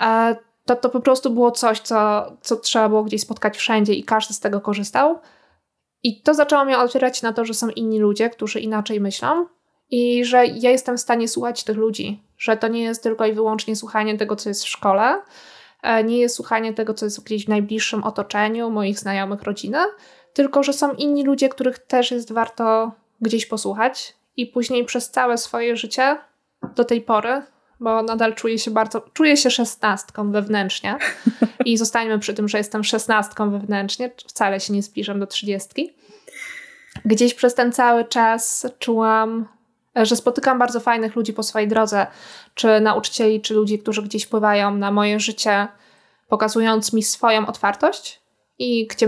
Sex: female